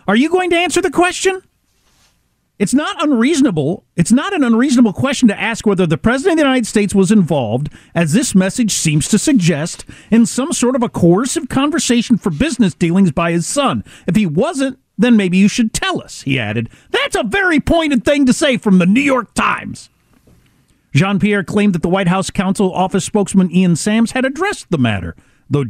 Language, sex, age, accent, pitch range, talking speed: English, male, 50-69, American, 155-245 Hz, 195 wpm